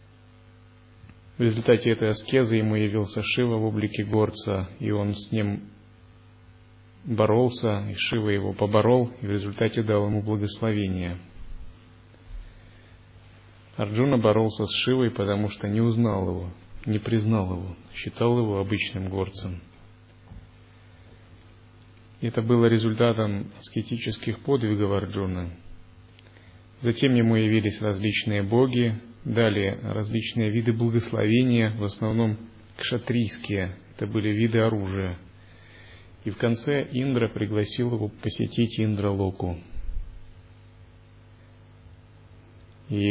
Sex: male